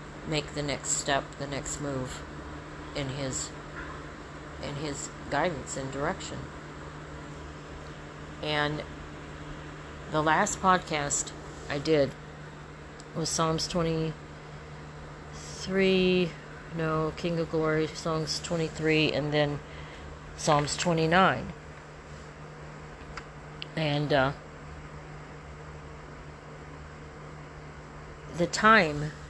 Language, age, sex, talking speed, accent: English, 40-59, female, 75 wpm, American